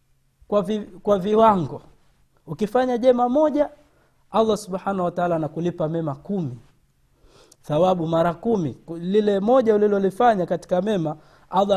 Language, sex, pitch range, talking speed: Swahili, male, 165-215 Hz, 115 wpm